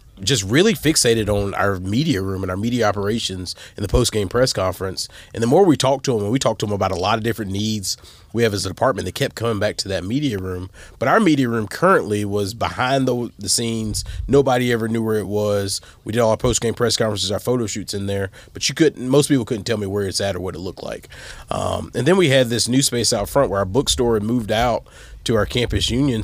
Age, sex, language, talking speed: 30-49, male, English, 260 wpm